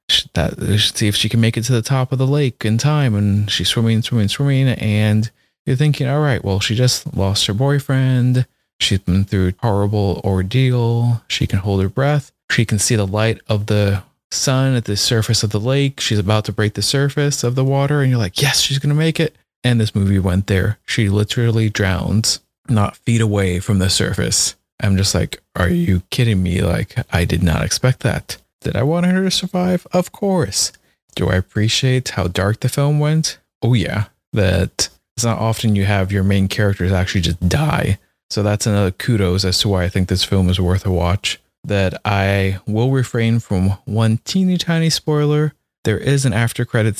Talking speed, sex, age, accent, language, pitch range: 205 wpm, male, 20-39, American, English, 100-125 Hz